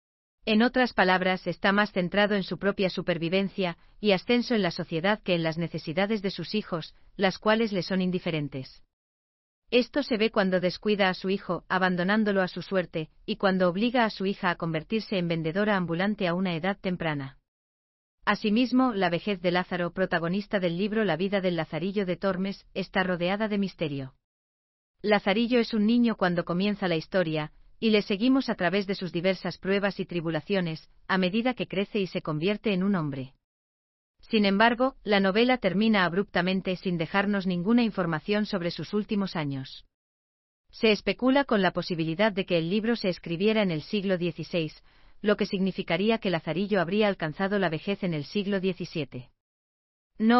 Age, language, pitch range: 40-59, German, 170-210 Hz